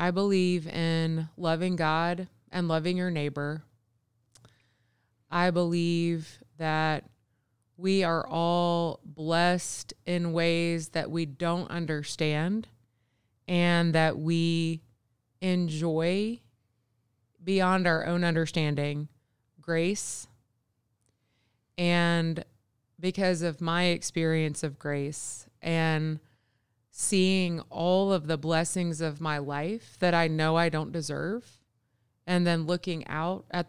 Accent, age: American, 20-39